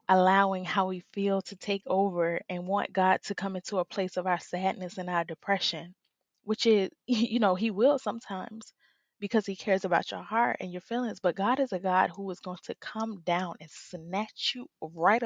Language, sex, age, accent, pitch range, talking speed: English, female, 20-39, American, 185-225 Hz, 205 wpm